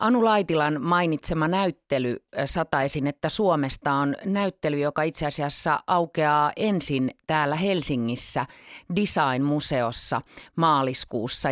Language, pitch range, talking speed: Finnish, 135-175 Hz, 95 wpm